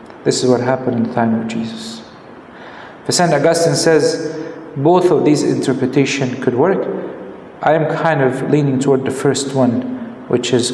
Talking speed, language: 170 wpm, English